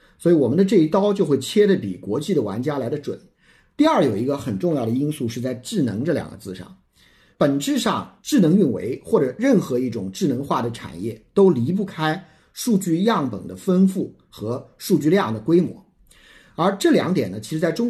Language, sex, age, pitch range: Chinese, male, 50-69, 125-195 Hz